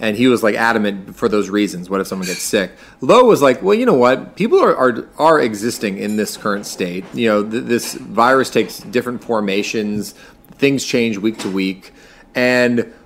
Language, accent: English, American